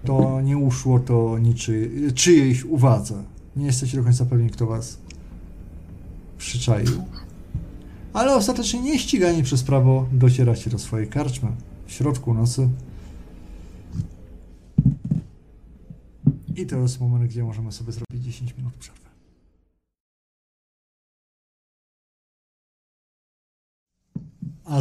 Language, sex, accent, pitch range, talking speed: Polish, male, native, 110-125 Hz, 95 wpm